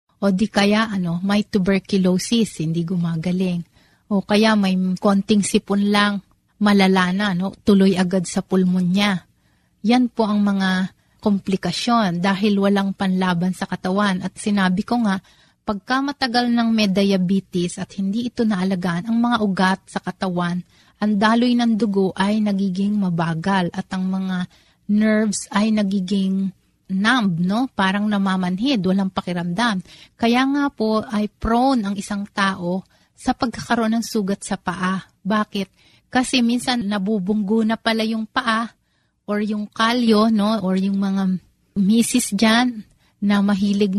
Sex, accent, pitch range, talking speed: female, native, 190-220 Hz, 135 wpm